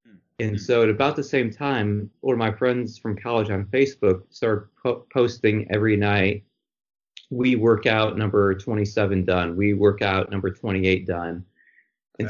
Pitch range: 95-115 Hz